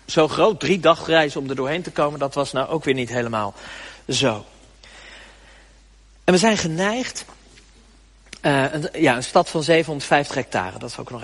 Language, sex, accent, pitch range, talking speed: Dutch, male, Dutch, 135-200 Hz, 180 wpm